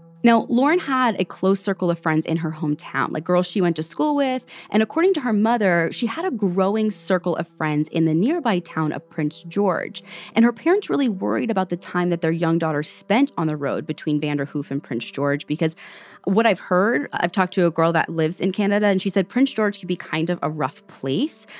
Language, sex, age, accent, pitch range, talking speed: English, female, 20-39, American, 160-230 Hz, 230 wpm